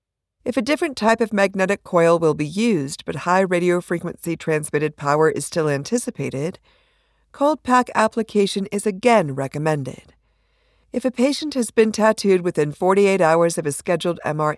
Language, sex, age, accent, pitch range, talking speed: English, female, 50-69, American, 155-220 Hz, 155 wpm